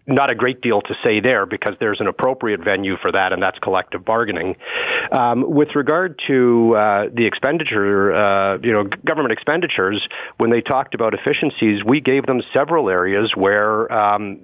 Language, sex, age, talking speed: English, male, 40-59, 175 wpm